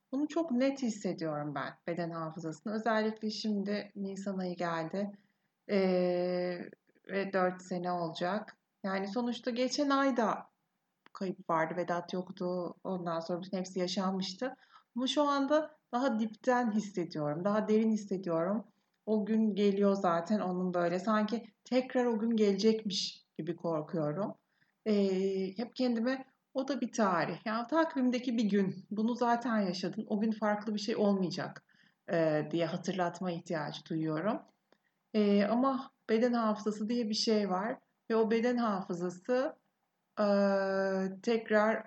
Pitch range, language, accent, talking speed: 180-220 Hz, Turkish, native, 135 wpm